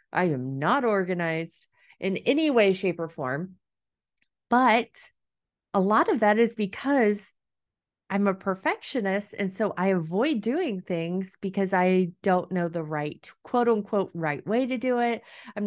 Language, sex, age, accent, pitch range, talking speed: English, female, 30-49, American, 180-250 Hz, 155 wpm